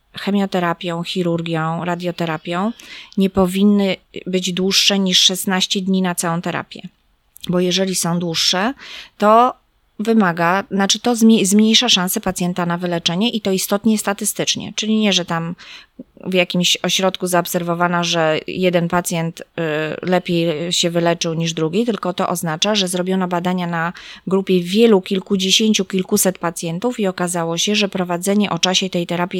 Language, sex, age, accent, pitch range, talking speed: Polish, female, 20-39, native, 175-200 Hz, 135 wpm